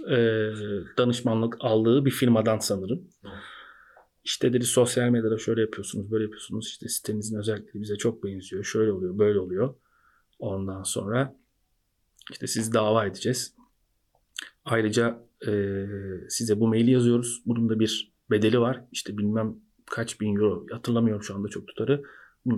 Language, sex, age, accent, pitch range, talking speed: Turkish, male, 40-59, native, 110-140 Hz, 135 wpm